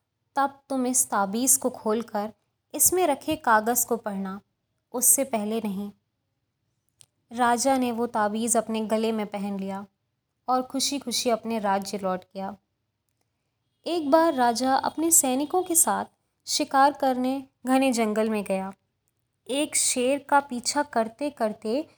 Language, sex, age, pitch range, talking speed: Hindi, female, 20-39, 215-275 Hz, 135 wpm